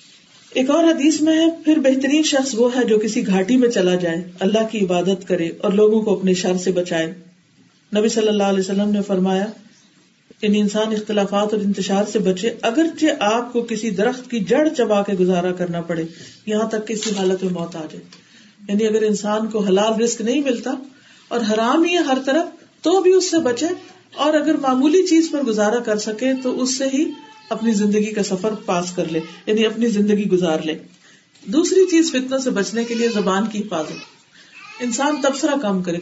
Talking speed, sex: 195 wpm, female